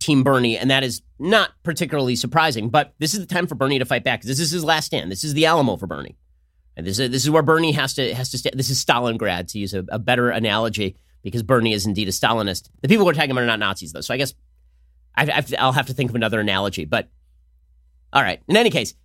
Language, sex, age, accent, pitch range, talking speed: English, male, 30-49, American, 105-150 Hz, 260 wpm